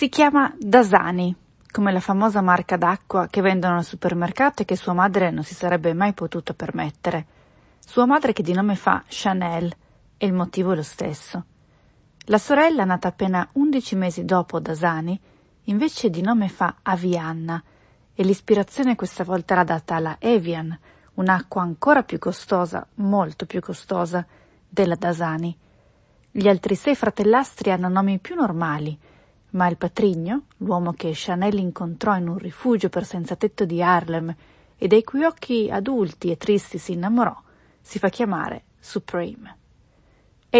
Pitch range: 170-210 Hz